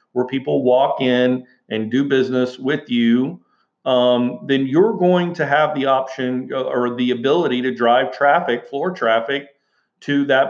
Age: 40-59